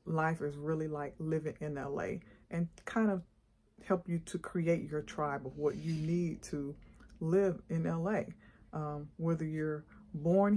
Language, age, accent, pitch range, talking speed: English, 40-59, American, 155-185 Hz, 160 wpm